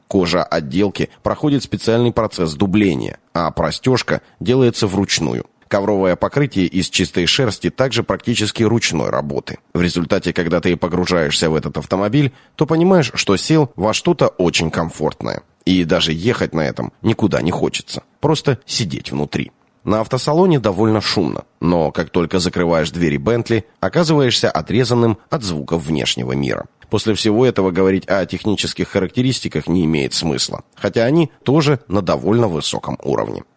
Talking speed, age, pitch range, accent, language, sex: 140 wpm, 30-49, 90-120 Hz, native, Russian, male